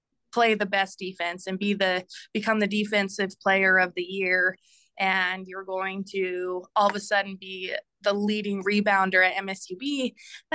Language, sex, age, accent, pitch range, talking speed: English, female, 20-39, American, 190-235 Hz, 165 wpm